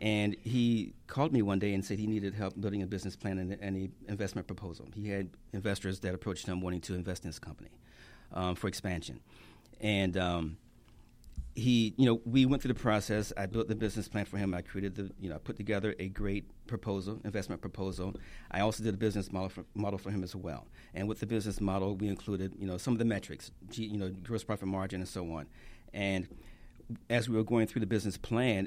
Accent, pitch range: American, 95-115 Hz